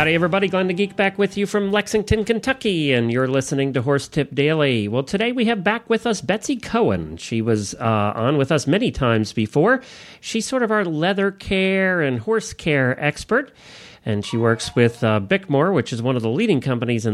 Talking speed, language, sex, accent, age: 210 wpm, English, male, American, 40-59